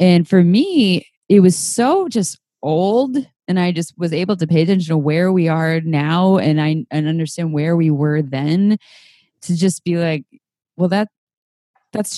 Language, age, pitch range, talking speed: English, 20-39, 155-190 Hz, 175 wpm